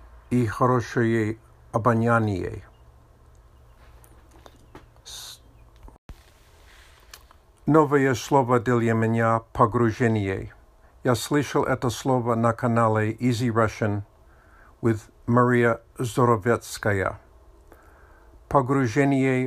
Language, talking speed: Russian, 60 wpm